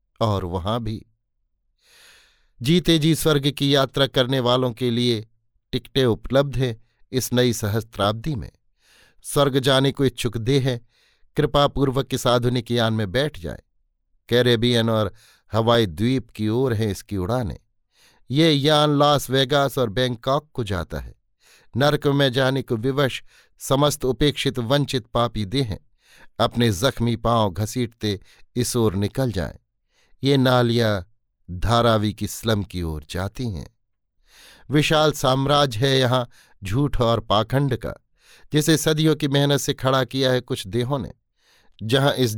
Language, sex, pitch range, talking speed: Hindi, male, 110-140 Hz, 135 wpm